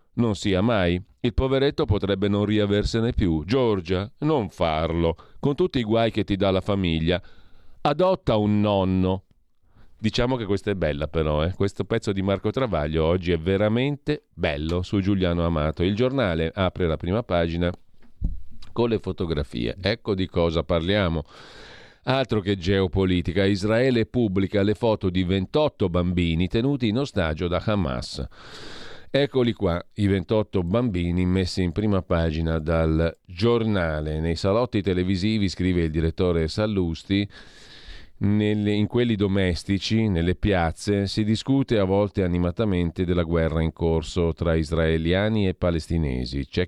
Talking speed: 140 wpm